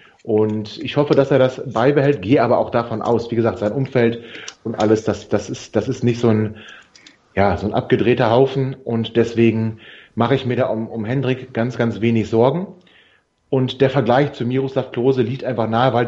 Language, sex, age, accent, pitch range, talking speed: German, male, 30-49, German, 115-135 Hz, 200 wpm